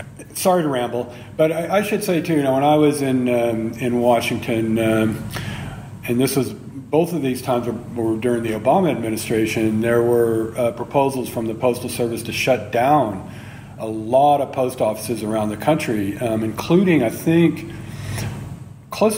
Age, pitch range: 40-59, 110-130 Hz